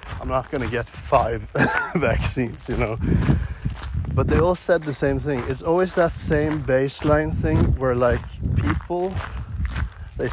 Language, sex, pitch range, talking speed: English, male, 100-145 Hz, 145 wpm